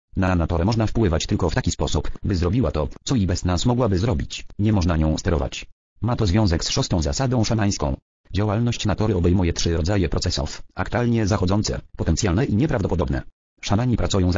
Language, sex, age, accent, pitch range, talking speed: English, male, 40-59, Polish, 85-110 Hz, 175 wpm